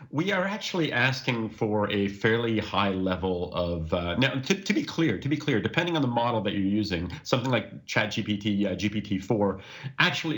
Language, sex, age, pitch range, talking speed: English, male, 40-59, 95-130 Hz, 190 wpm